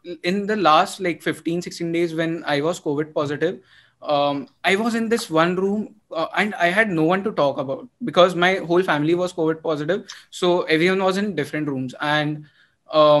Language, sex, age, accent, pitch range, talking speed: Hindi, male, 20-39, native, 165-215 Hz, 190 wpm